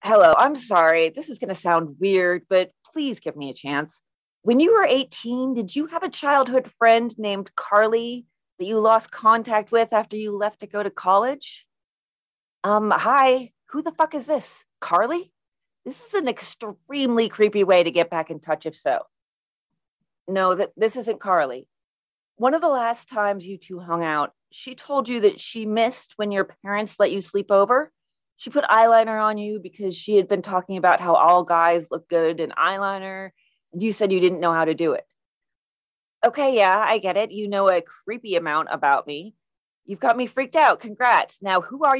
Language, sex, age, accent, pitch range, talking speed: English, female, 30-49, American, 190-240 Hz, 190 wpm